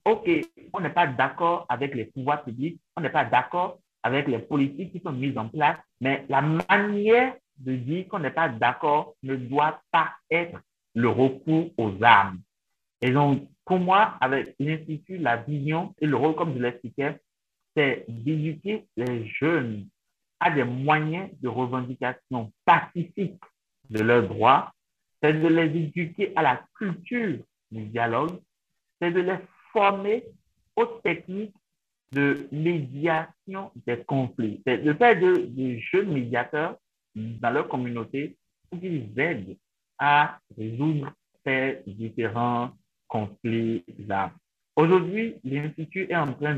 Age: 60-79